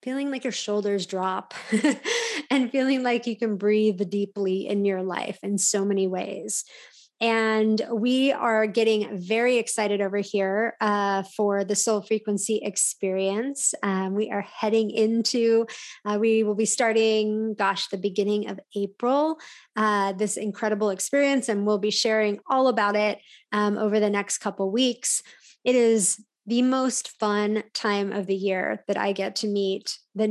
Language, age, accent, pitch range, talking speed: English, 20-39, American, 200-225 Hz, 160 wpm